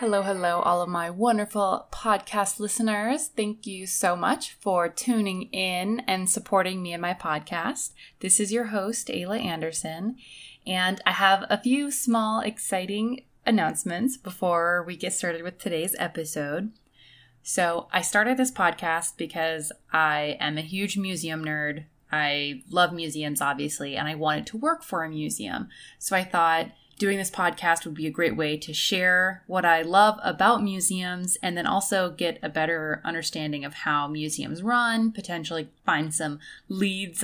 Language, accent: English, American